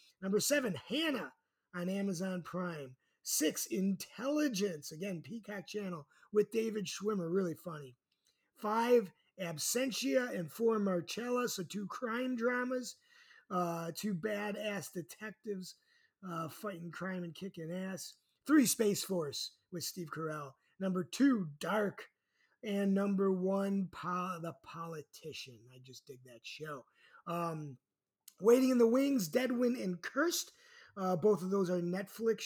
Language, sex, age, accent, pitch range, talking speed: English, male, 30-49, American, 170-215 Hz, 125 wpm